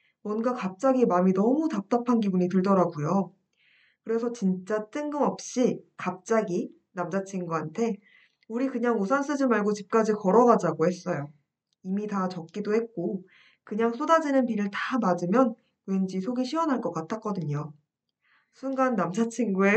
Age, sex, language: 20-39, female, Korean